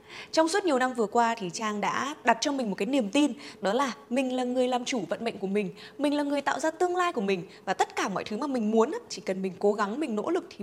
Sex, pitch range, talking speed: female, 215-315 Hz, 300 wpm